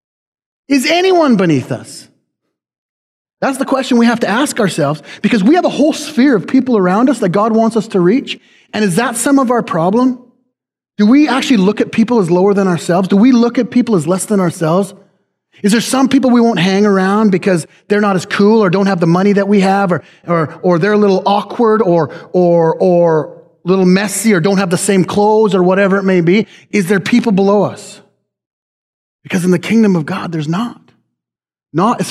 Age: 30-49